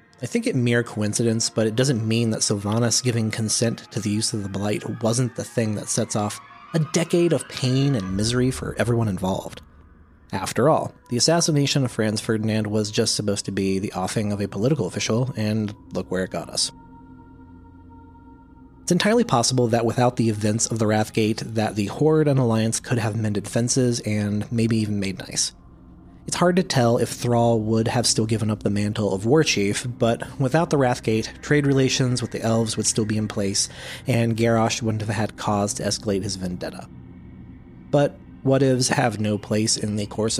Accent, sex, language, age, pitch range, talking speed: American, male, English, 30-49, 105-125 Hz, 190 wpm